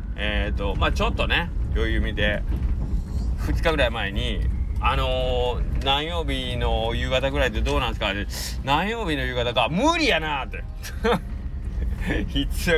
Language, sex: Japanese, male